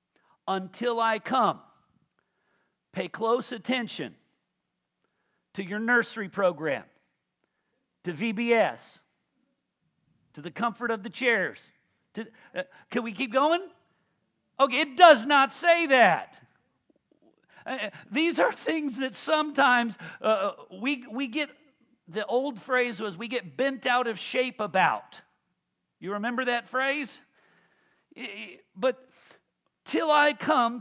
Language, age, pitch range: English, 50-69, 200-265 Hz